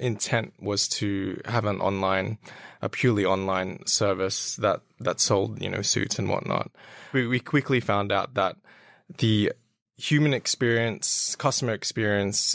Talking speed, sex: 140 wpm, male